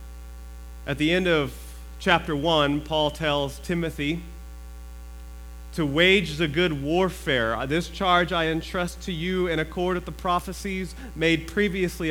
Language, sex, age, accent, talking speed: English, male, 30-49, American, 135 wpm